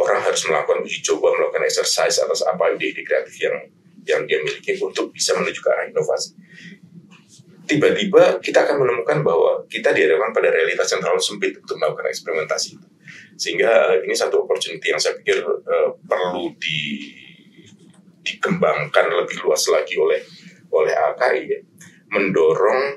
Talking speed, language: 145 wpm, Indonesian